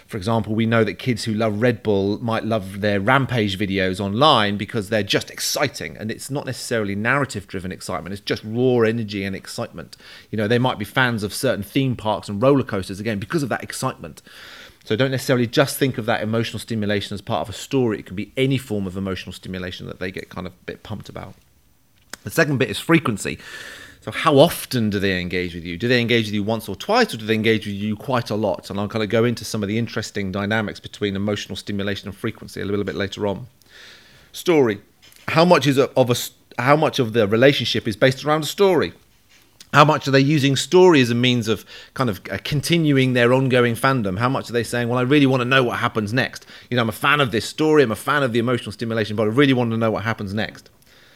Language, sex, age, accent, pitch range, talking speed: English, male, 30-49, British, 105-130 Hz, 240 wpm